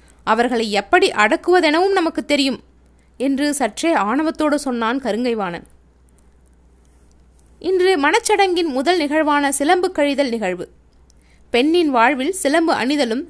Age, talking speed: 20-39, 95 wpm